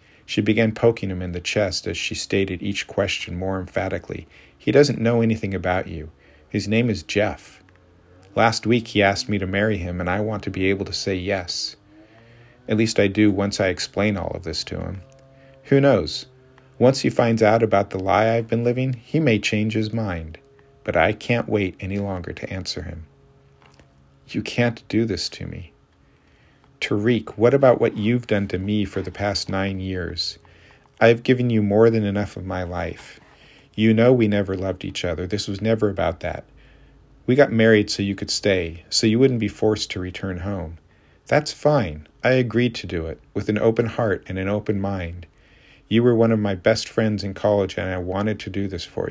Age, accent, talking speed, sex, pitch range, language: 40-59, American, 205 wpm, male, 95-115 Hz, English